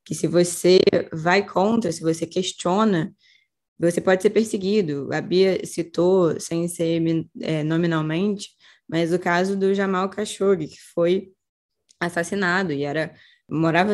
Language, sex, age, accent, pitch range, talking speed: Portuguese, female, 10-29, Brazilian, 170-200 Hz, 135 wpm